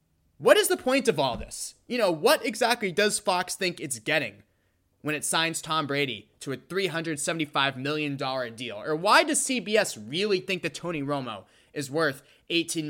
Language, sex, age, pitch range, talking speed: English, male, 20-39, 140-190 Hz, 175 wpm